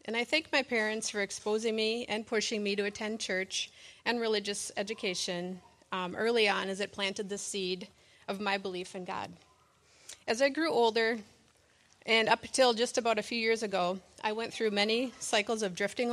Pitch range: 190-225 Hz